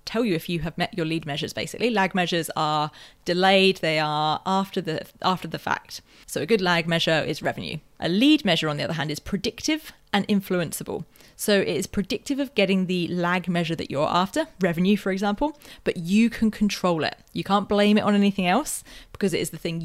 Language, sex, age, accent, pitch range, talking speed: English, female, 30-49, British, 170-210 Hz, 215 wpm